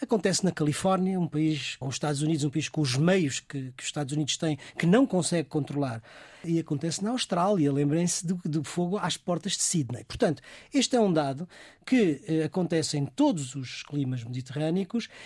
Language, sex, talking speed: Portuguese, male, 195 wpm